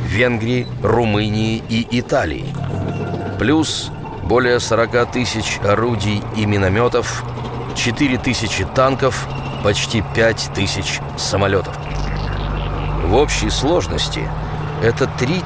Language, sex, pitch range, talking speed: Russian, male, 105-135 Hz, 90 wpm